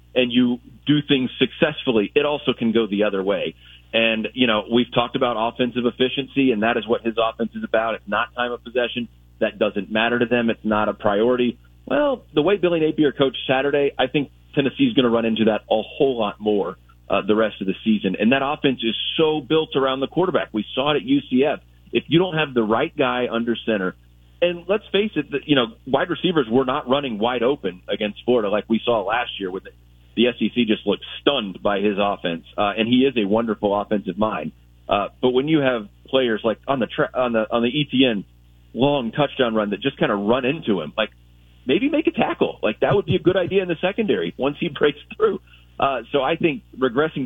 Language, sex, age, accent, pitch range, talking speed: English, male, 30-49, American, 105-135 Hz, 225 wpm